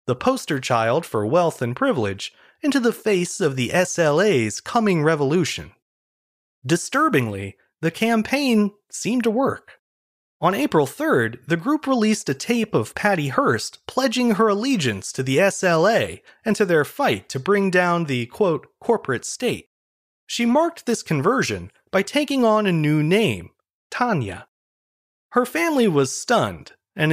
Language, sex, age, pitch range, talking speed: English, male, 30-49, 140-220 Hz, 145 wpm